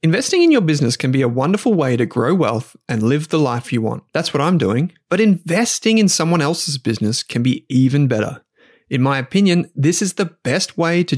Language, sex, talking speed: English, male, 220 wpm